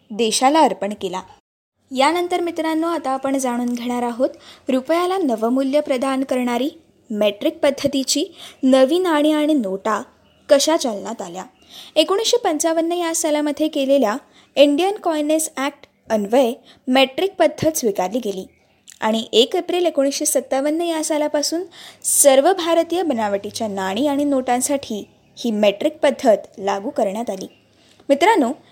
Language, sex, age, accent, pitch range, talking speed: Marathi, female, 20-39, native, 245-320 Hz, 115 wpm